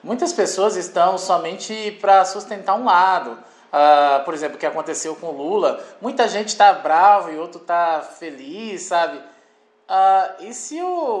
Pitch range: 155-210 Hz